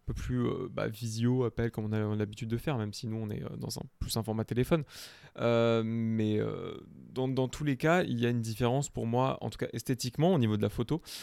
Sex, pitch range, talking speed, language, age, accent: male, 110-135 Hz, 245 wpm, French, 20-39, French